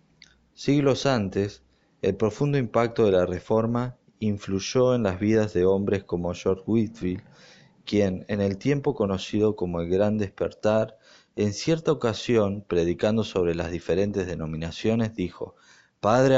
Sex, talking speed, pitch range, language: male, 130 wpm, 100-135 Hz, Spanish